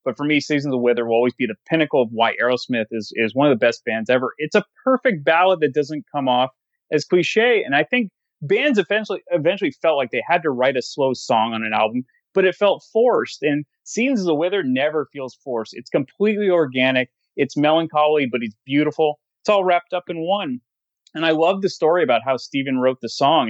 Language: English